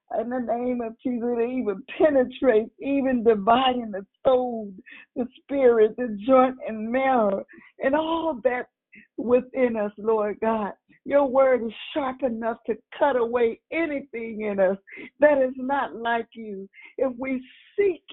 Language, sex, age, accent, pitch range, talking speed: English, female, 50-69, American, 225-265 Hz, 140 wpm